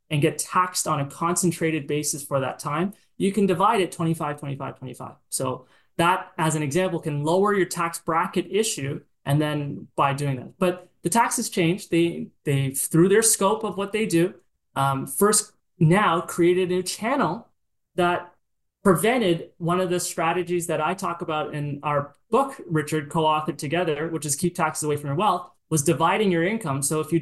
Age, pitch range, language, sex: 20-39, 155-190 Hz, English, male